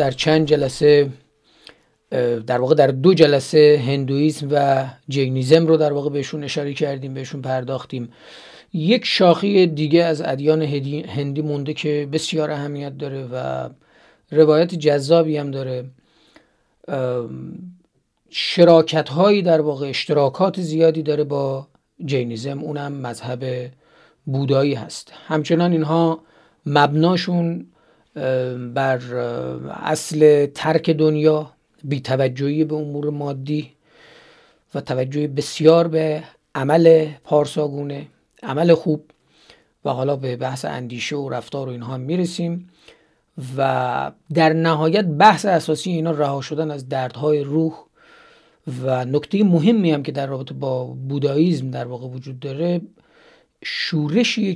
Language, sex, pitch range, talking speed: Persian, male, 135-160 Hz, 115 wpm